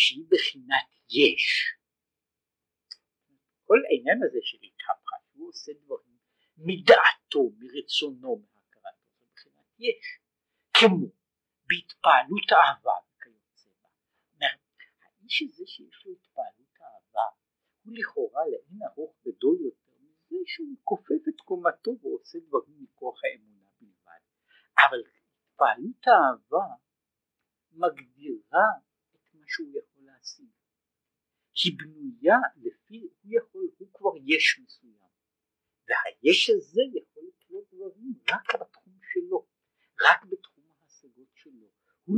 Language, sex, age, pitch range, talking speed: Hebrew, male, 50-69, 250-400 Hz, 85 wpm